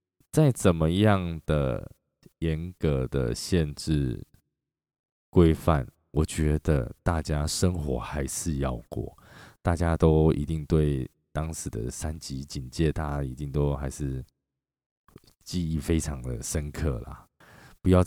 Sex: male